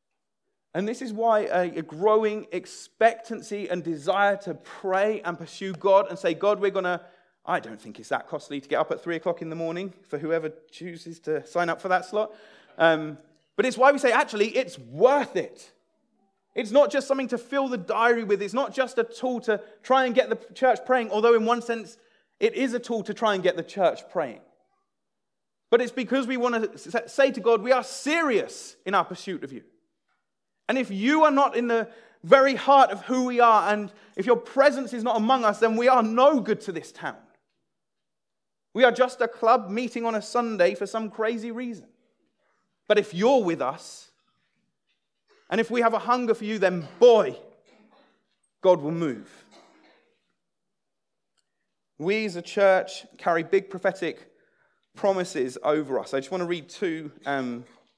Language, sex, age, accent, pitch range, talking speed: English, male, 30-49, British, 185-250 Hz, 190 wpm